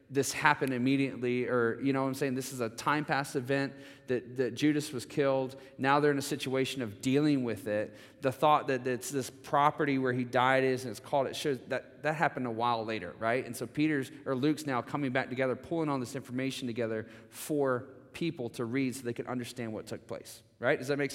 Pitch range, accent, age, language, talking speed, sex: 120-145 Hz, American, 30-49, English, 225 wpm, male